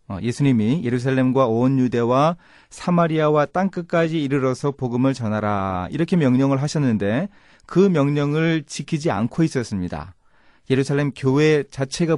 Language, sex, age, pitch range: Korean, male, 30-49, 120-165 Hz